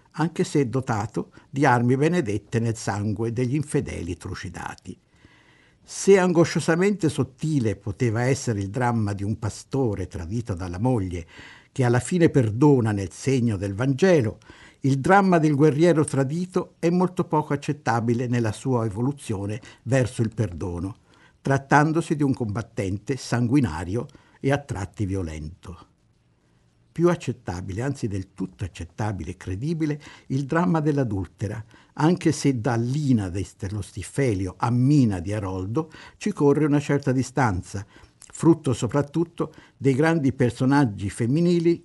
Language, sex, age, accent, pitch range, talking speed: Italian, male, 60-79, native, 105-145 Hz, 125 wpm